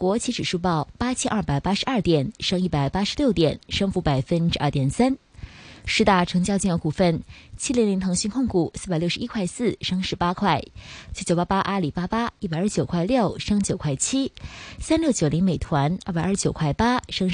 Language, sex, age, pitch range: Chinese, female, 20-39, 170-225 Hz